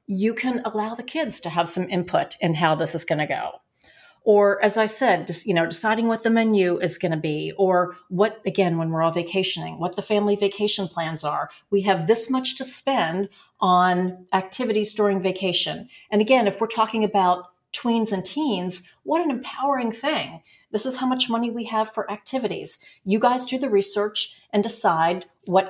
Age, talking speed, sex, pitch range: 40-59, 195 wpm, female, 180-225 Hz